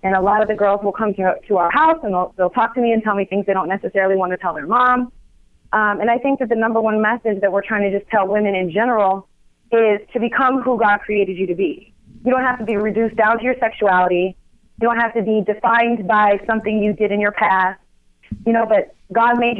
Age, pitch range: 30-49, 200-235 Hz